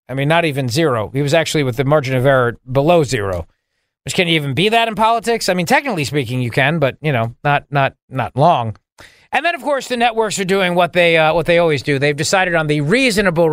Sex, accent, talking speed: male, American, 245 wpm